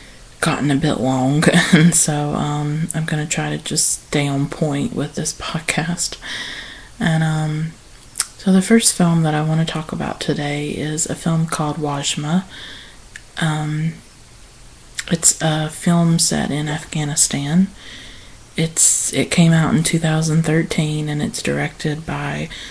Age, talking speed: 30-49, 145 wpm